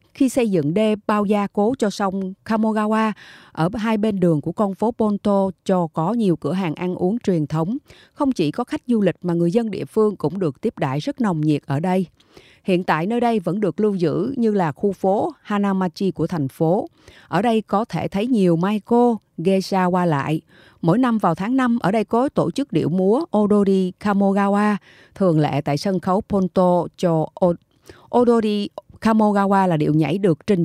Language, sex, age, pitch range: Japanese, female, 30-49, 170-220 Hz